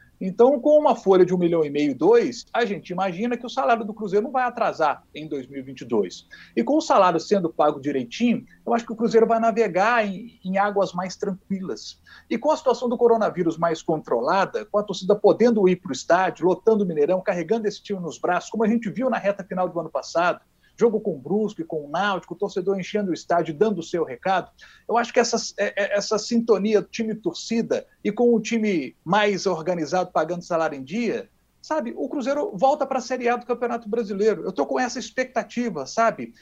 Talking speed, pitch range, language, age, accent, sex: 215 wpm, 190-235 Hz, Portuguese, 40-59, Brazilian, male